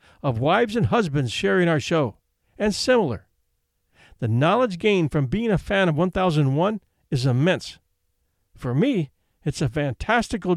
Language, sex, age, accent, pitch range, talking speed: English, male, 50-69, American, 125-185 Hz, 140 wpm